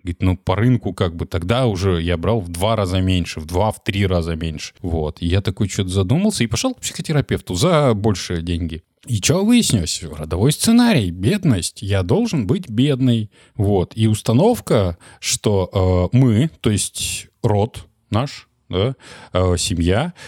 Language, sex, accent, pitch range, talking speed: Russian, male, native, 90-120 Hz, 165 wpm